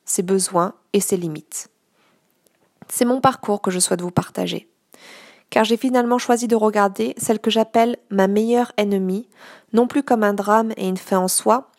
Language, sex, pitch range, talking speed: French, female, 185-220 Hz, 180 wpm